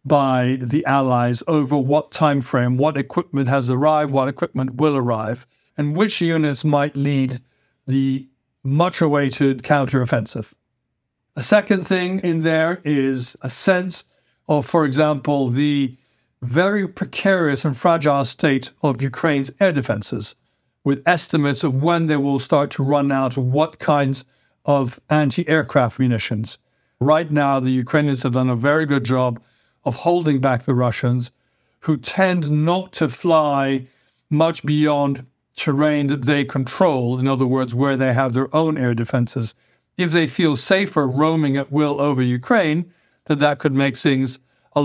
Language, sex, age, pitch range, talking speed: English, male, 60-79, 130-155 Hz, 150 wpm